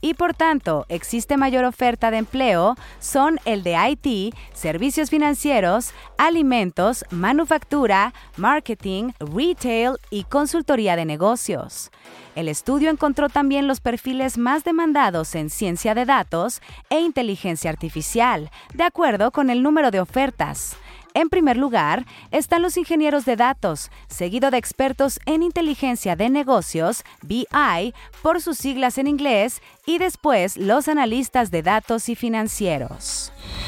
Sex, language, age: female, Spanish, 30-49